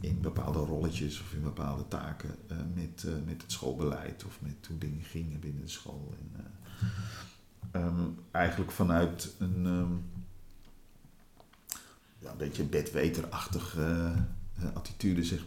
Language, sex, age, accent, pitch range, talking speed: Dutch, male, 50-69, Dutch, 90-105 Hz, 120 wpm